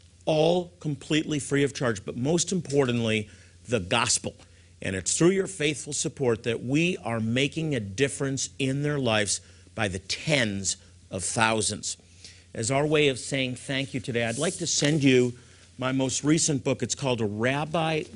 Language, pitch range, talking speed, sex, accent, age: English, 110-150 Hz, 170 wpm, male, American, 50-69